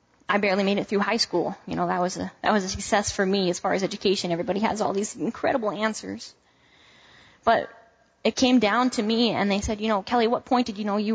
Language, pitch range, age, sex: English, 185-225 Hz, 20-39, female